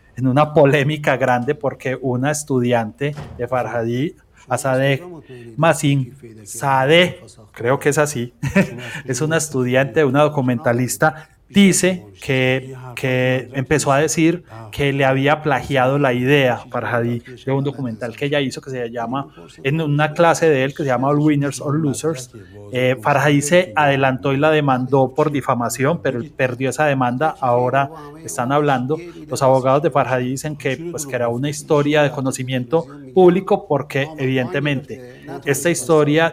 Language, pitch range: Spanish, 125-150 Hz